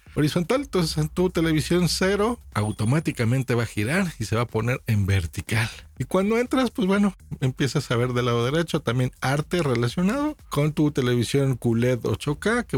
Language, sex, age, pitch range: Spanish, male, 50-69, 115-160 Hz